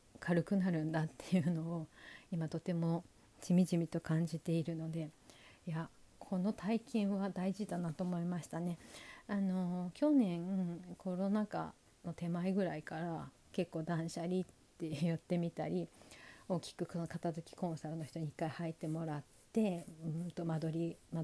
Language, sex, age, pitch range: Japanese, female, 40-59, 165-190 Hz